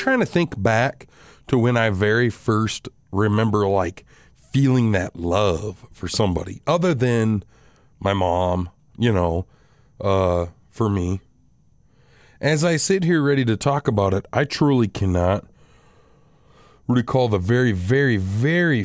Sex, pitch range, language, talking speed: male, 100-135 Hz, English, 135 wpm